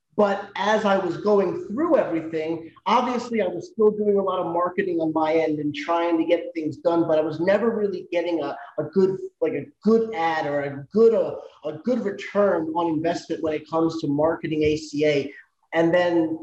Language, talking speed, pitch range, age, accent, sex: English, 200 wpm, 155-195 Hz, 30-49, American, male